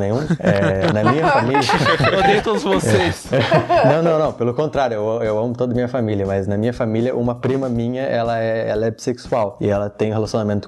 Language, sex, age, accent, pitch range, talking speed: Portuguese, male, 20-39, Brazilian, 105-125 Hz, 210 wpm